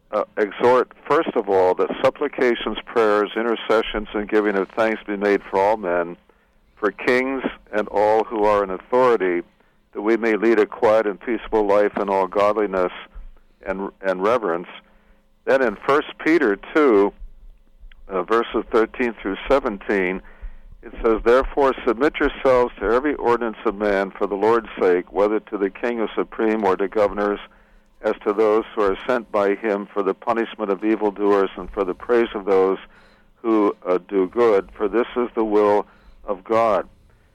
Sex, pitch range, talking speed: male, 100-115 Hz, 165 wpm